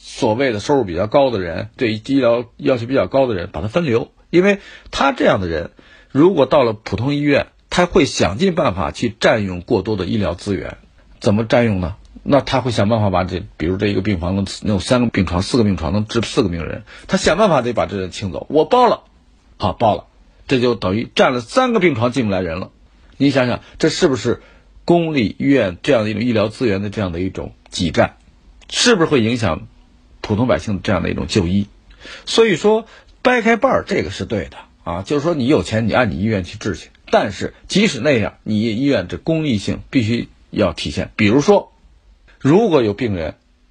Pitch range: 95-140 Hz